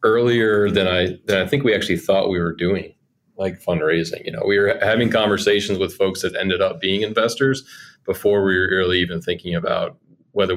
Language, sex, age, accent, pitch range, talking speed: English, male, 30-49, American, 90-100 Hz, 200 wpm